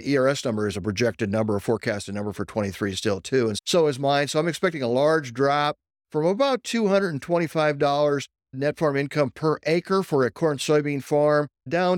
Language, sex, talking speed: English, male, 180 wpm